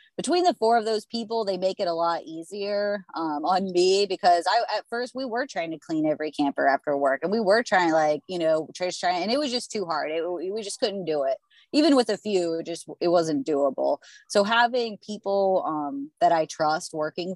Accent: American